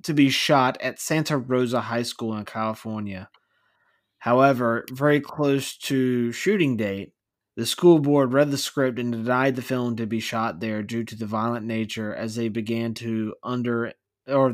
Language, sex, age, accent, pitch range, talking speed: English, male, 20-39, American, 115-140 Hz, 170 wpm